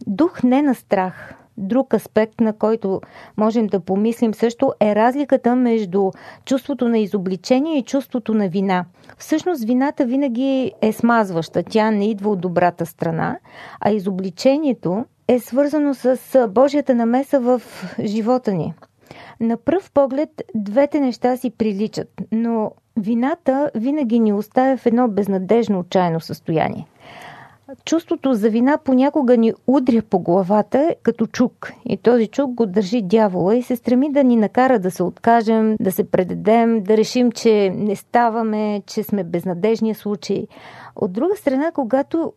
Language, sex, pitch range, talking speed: Bulgarian, female, 200-255 Hz, 145 wpm